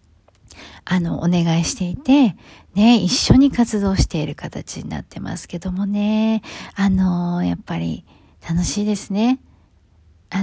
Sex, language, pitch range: female, Japanese, 160-225 Hz